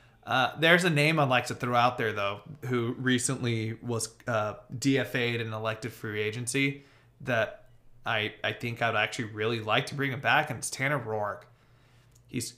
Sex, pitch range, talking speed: male, 115-135 Hz, 175 wpm